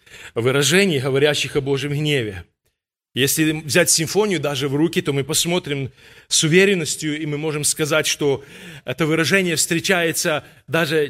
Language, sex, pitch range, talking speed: Russian, male, 125-160 Hz, 135 wpm